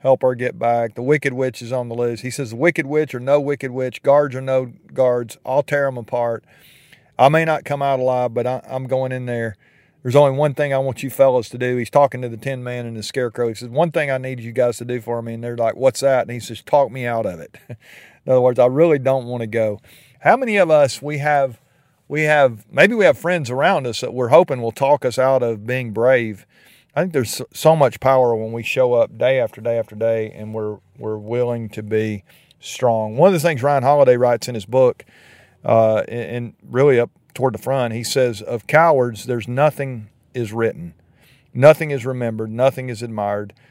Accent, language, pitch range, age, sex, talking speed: American, English, 115-135 Hz, 40-59, male, 230 wpm